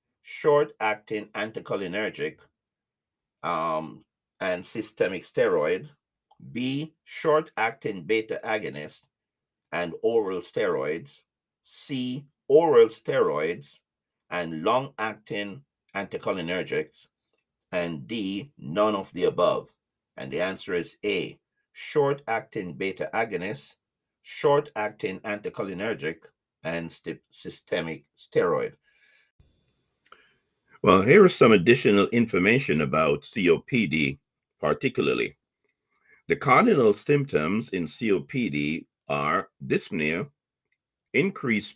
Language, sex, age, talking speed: English, male, 50-69, 80 wpm